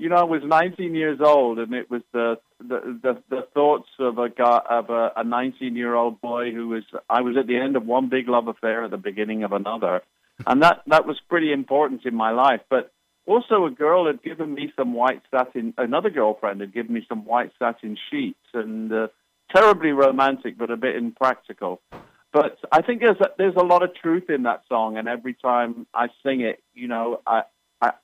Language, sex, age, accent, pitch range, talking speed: English, male, 50-69, British, 115-140 Hz, 205 wpm